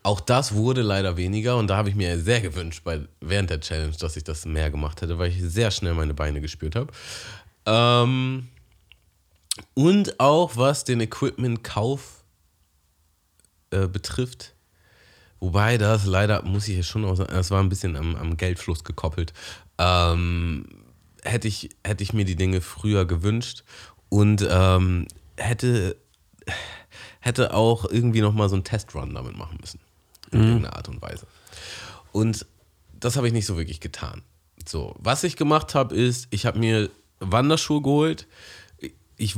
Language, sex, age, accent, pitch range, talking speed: German, male, 30-49, German, 85-115 Hz, 155 wpm